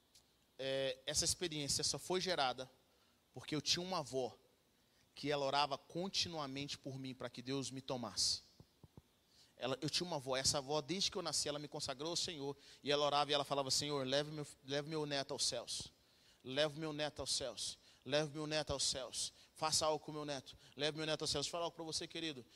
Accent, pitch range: Brazilian, 140-170 Hz